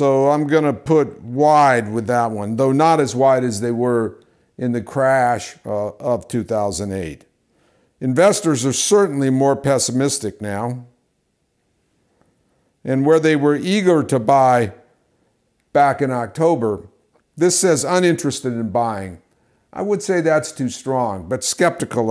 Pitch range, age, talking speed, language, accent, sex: 120-150 Hz, 60-79, 135 wpm, English, American, male